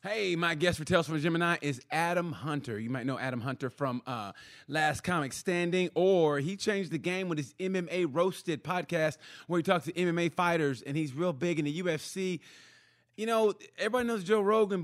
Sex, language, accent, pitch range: male, English, American, 125-180 Hz